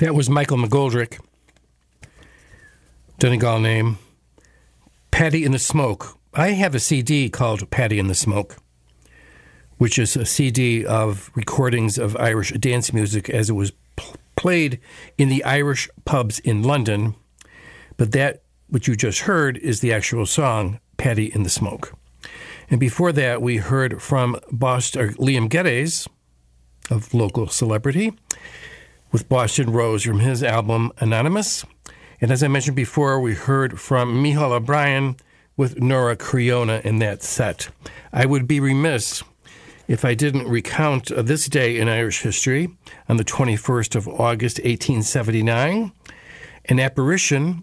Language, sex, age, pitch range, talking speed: English, male, 60-79, 110-140 Hz, 140 wpm